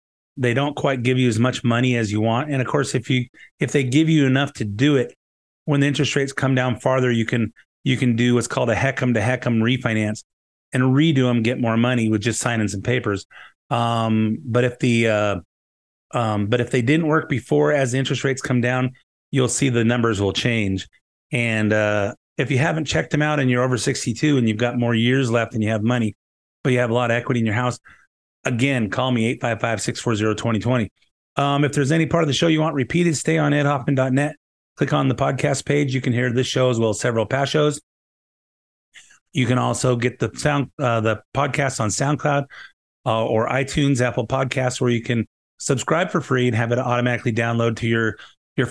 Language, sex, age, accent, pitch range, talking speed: English, male, 30-49, American, 115-135 Hz, 215 wpm